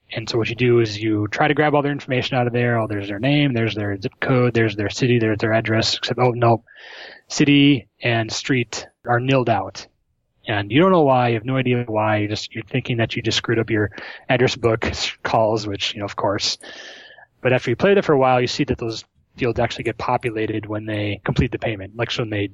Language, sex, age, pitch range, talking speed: English, male, 20-39, 110-130 Hz, 240 wpm